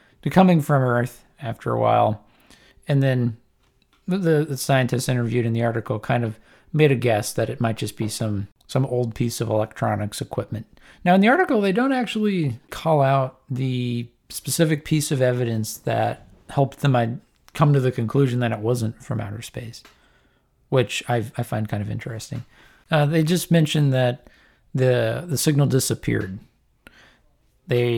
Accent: American